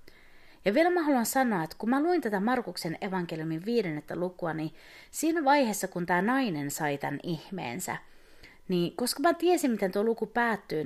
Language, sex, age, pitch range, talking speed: Finnish, female, 30-49, 180-265 Hz, 170 wpm